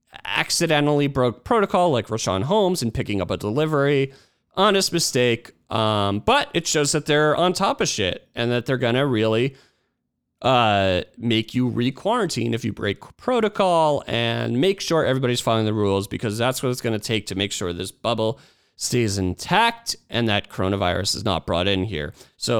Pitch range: 110-165 Hz